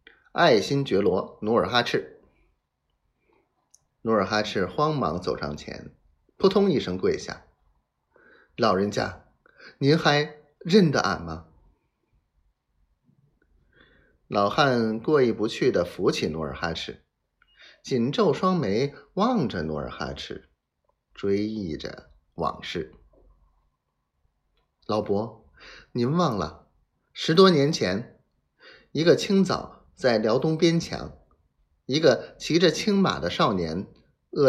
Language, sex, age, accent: Chinese, male, 30-49, native